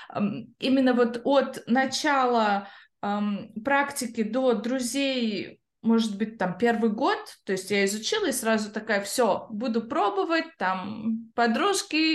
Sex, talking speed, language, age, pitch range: female, 125 wpm, Russian, 20-39, 220-270 Hz